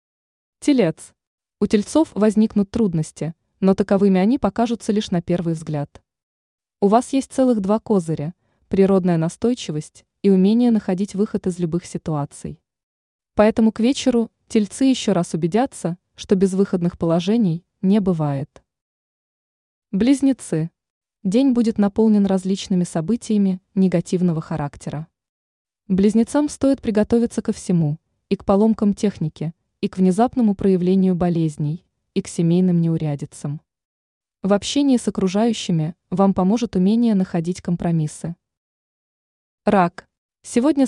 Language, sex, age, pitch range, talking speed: Russian, female, 20-39, 170-225 Hz, 115 wpm